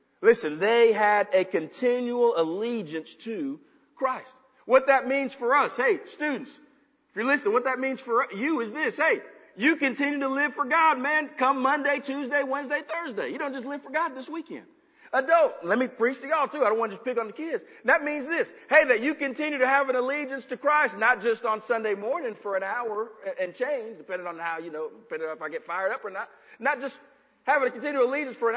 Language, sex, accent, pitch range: English, male, American, 235-295 Hz